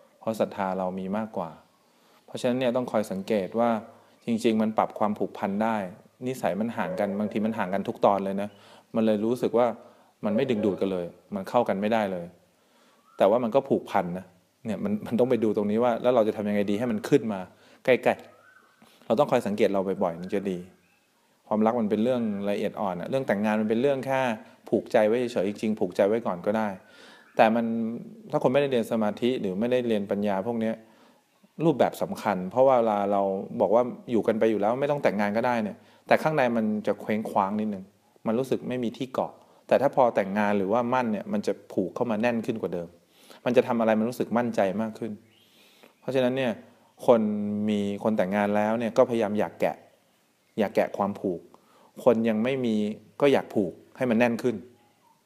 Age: 20-39